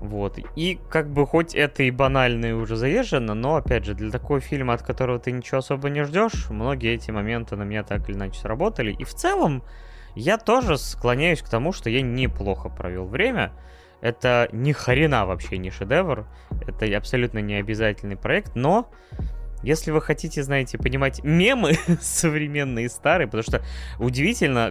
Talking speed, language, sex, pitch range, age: 170 wpm, Russian, male, 100-130 Hz, 20-39